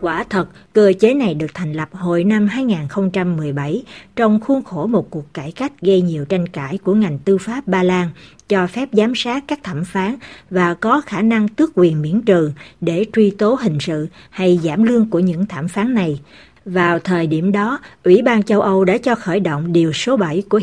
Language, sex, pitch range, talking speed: Vietnamese, female, 170-215 Hz, 210 wpm